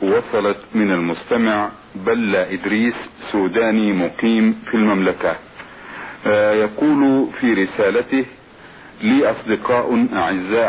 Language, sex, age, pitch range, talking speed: Arabic, male, 50-69, 110-145 Hz, 85 wpm